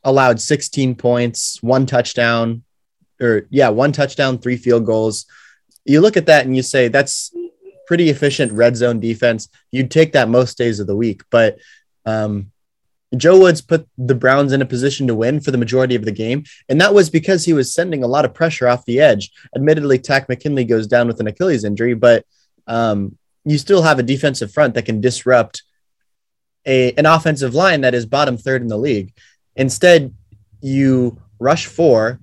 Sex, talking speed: male, 185 wpm